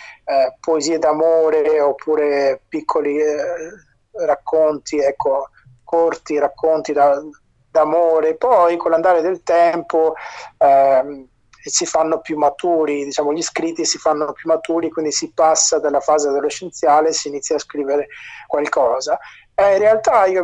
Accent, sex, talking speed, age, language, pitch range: native, male, 130 wpm, 30-49, Italian, 145-170 Hz